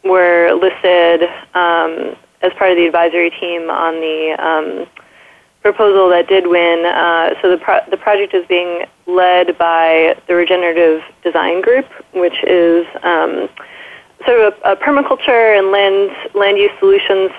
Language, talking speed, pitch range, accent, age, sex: English, 150 wpm, 170-200 Hz, American, 20-39, female